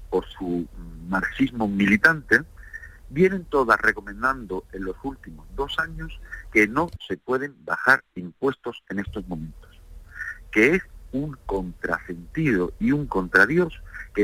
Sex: male